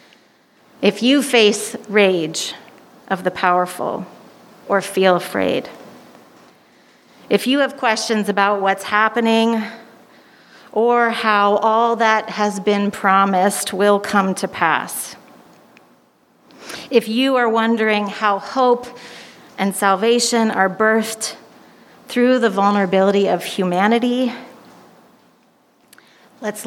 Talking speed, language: 100 wpm, English